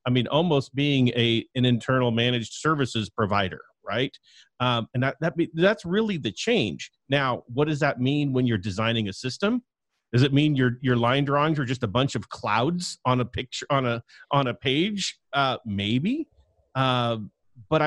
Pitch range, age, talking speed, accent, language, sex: 120-150 Hz, 40-59, 185 wpm, American, English, male